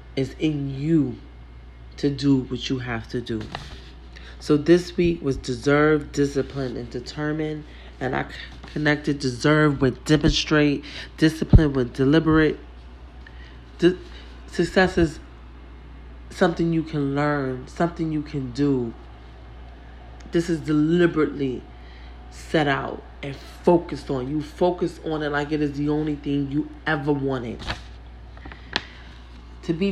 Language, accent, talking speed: English, American, 120 wpm